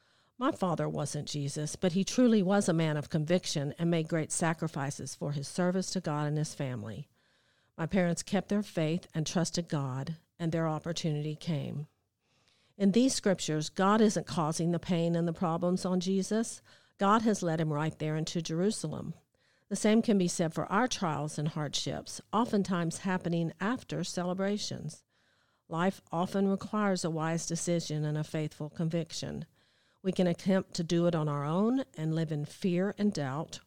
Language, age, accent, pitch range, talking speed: English, 50-69, American, 155-185 Hz, 170 wpm